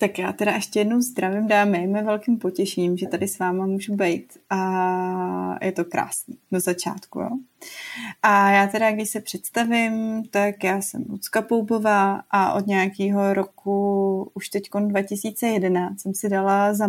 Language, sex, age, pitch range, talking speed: Slovak, female, 30-49, 195-225 Hz, 160 wpm